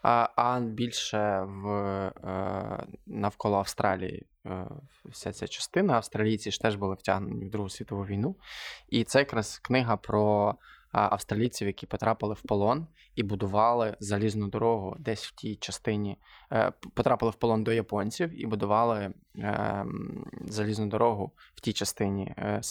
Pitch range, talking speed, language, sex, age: 100-120 Hz, 130 wpm, Ukrainian, male, 20-39